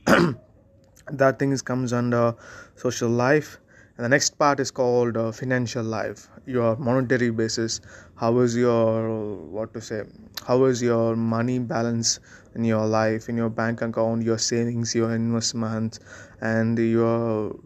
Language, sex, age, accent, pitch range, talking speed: Tamil, male, 20-39, native, 110-120 Hz, 145 wpm